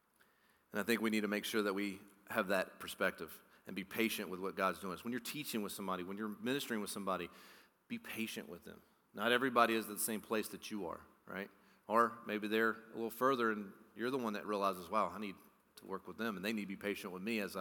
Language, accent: English, American